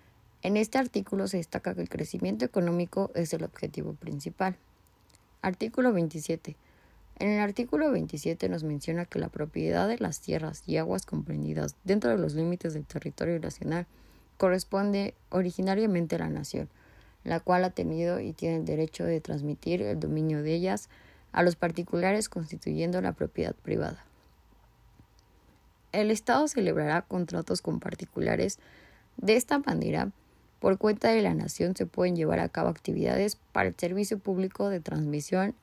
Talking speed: 150 wpm